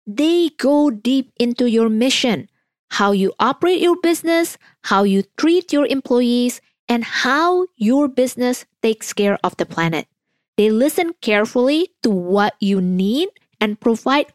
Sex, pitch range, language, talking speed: female, 205-280 Hz, English, 140 wpm